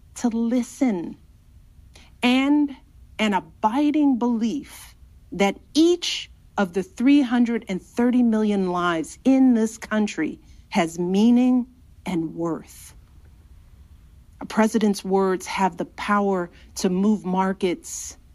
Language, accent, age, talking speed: English, American, 50-69, 95 wpm